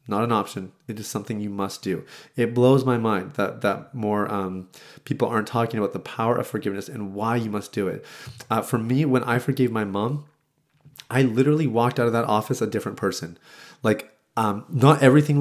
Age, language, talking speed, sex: 30-49, English, 205 wpm, male